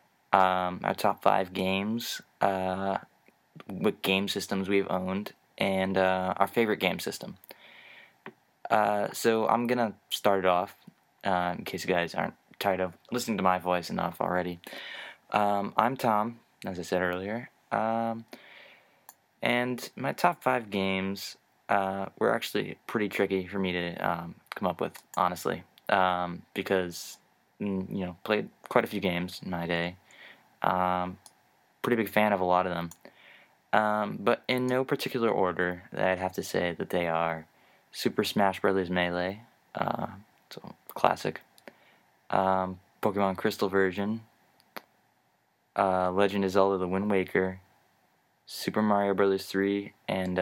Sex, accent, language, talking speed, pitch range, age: male, American, English, 145 wpm, 90-105 Hz, 20-39